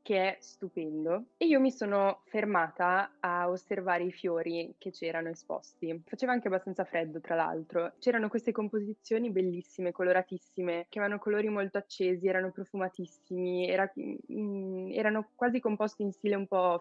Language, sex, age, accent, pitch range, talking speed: Italian, female, 20-39, native, 170-195 Hz, 145 wpm